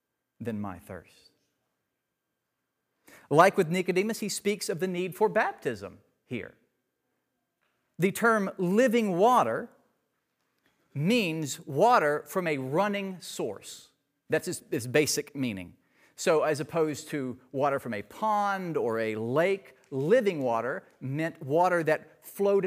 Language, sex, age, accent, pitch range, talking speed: English, male, 40-59, American, 135-195 Hz, 120 wpm